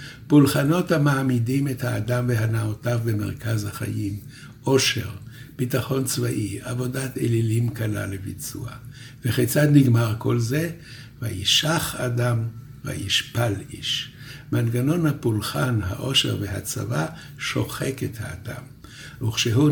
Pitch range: 110-135 Hz